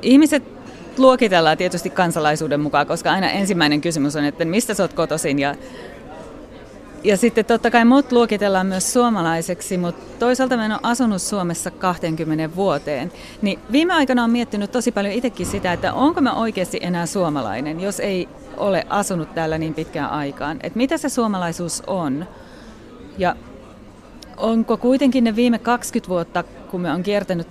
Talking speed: 155 wpm